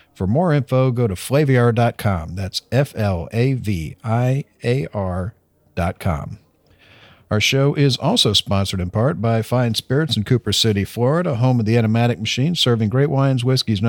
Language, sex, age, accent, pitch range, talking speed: English, male, 50-69, American, 110-135 Hz, 165 wpm